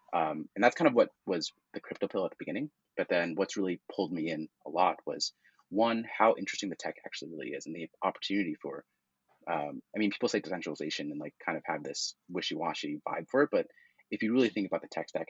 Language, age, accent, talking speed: English, 30-49, American, 240 wpm